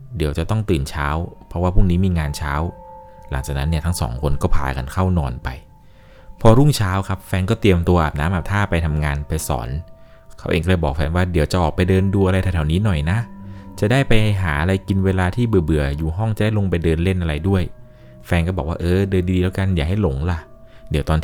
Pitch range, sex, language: 80-95 Hz, male, Thai